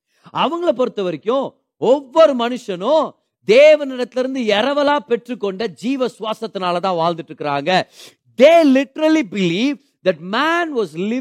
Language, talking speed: Tamil, 55 wpm